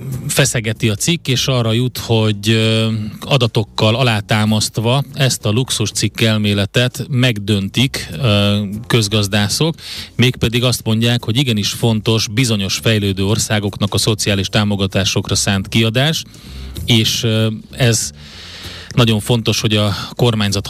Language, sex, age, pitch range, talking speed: Hungarian, male, 30-49, 100-125 Hz, 105 wpm